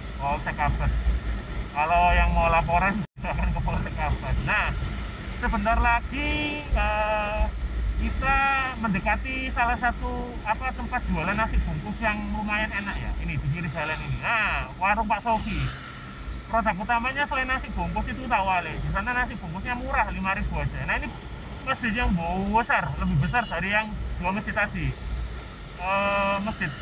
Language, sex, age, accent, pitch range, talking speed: Indonesian, male, 30-49, native, 175-250 Hz, 135 wpm